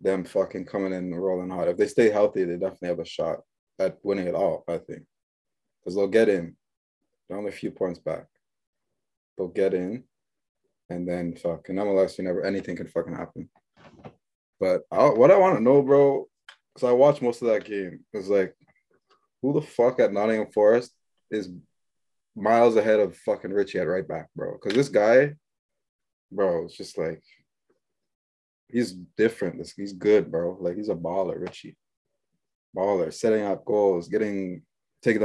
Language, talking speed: English, 175 wpm